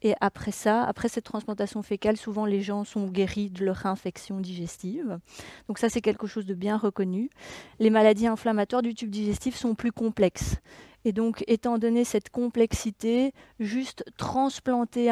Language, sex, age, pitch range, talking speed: Dutch, female, 30-49, 205-235 Hz, 165 wpm